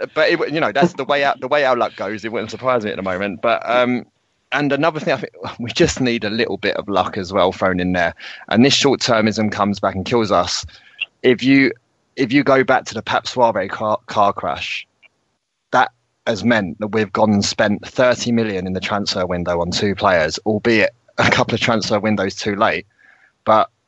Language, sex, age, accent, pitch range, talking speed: English, male, 20-39, British, 100-115 Hz, 220 wpm